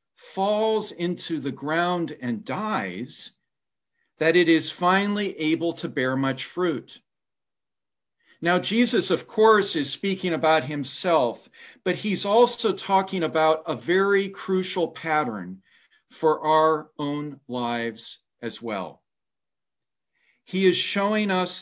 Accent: American